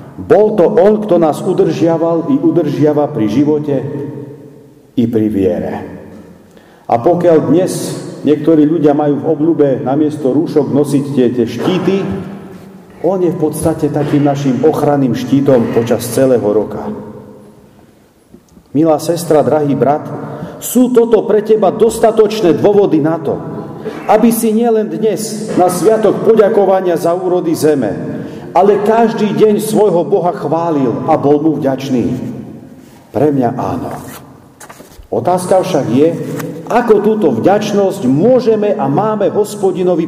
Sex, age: male, 50-69